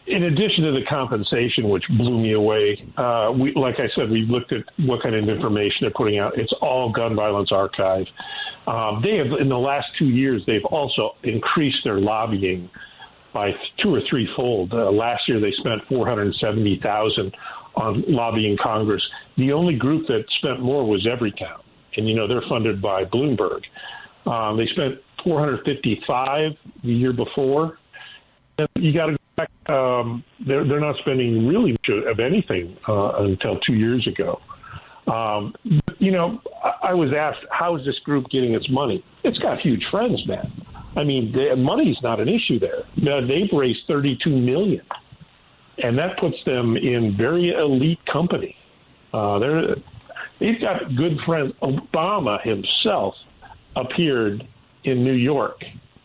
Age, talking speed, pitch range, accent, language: 50-69, 160 wpm, 115-150 Hz, American, English